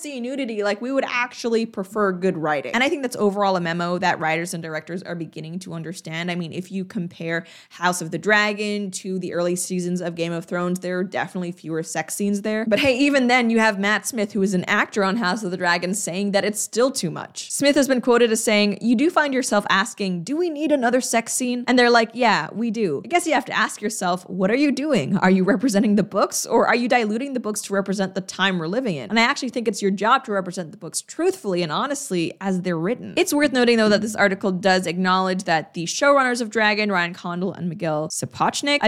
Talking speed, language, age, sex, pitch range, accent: 245 wpm, English, 20-39, female, 180-245 Hz, American